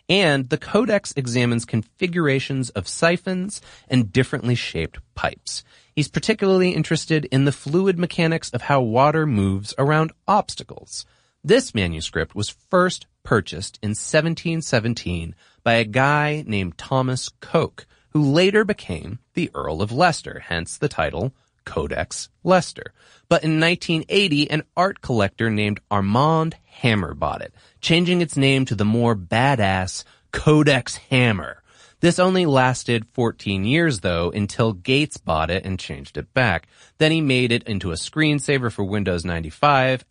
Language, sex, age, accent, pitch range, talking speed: English, male, 30-49, American, 105-155 Hz, 140 wpm